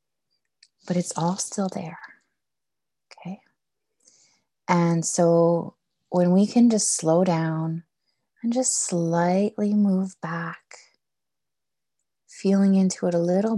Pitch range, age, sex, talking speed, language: 160-195 Hz, 30-49, female, 105 wpm, English